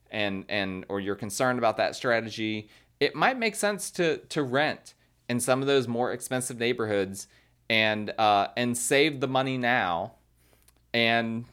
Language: English